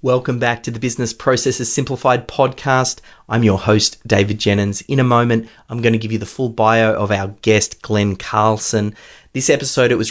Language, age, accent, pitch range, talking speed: English, 30-49, Australian, 115-140 Hz, 190 wpm